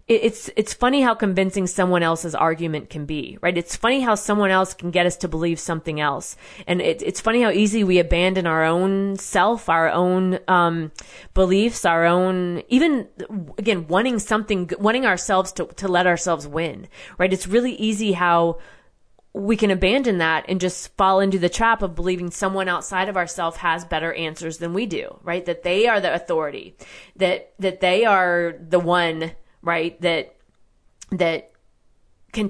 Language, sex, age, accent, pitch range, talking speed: English, female, 20-39, American, 170-205 Hz, 175 wpm